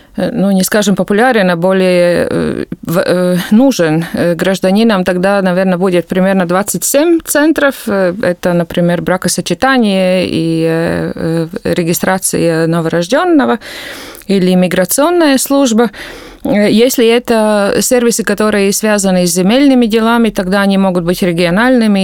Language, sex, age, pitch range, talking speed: Ukrainian, female, 20-39, 185-230 Hz, 100 wpm